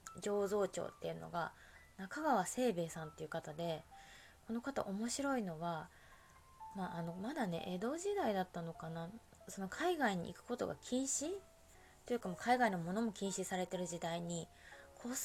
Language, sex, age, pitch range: Japanese, female, 20-39, 160-205 Hz